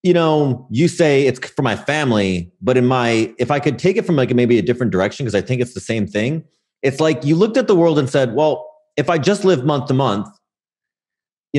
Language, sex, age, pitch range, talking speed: English, male, 30-49, 105-155 Hz, 245 wpm